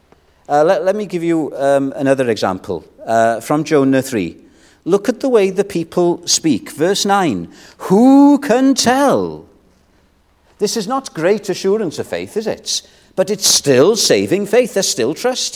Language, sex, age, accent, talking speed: English, male, 50-69, British, 160 wpm